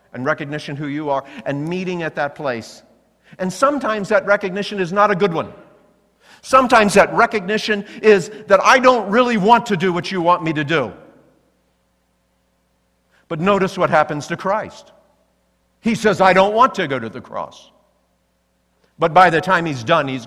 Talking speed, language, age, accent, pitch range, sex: 175 wpm, English, 50-69, American, 155-205 Hz, male